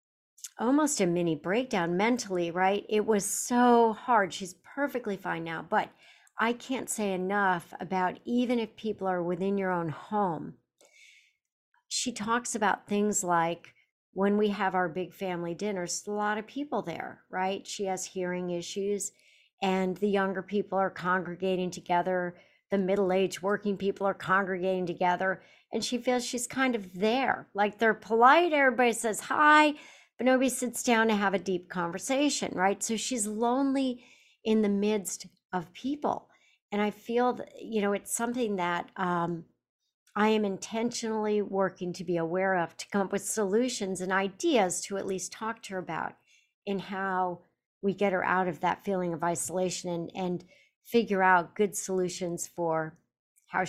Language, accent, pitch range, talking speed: English, American, 180-220 Hz, 165 wpm